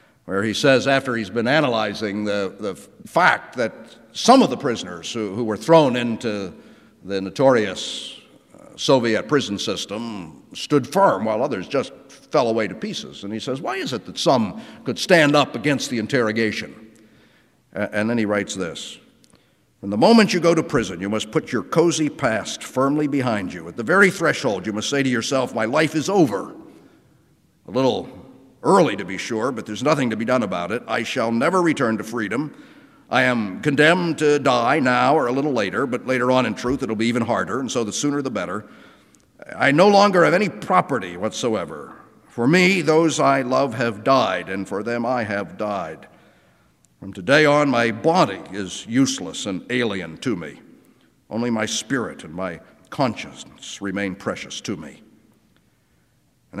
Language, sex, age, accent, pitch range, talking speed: English, male, 50-69, American, 105-145 Hz, 180 wpm